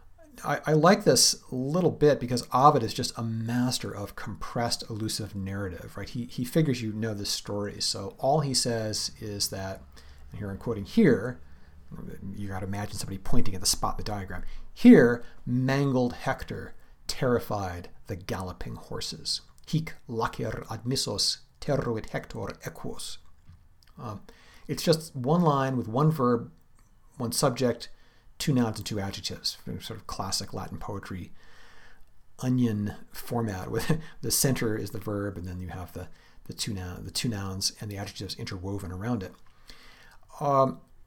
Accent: American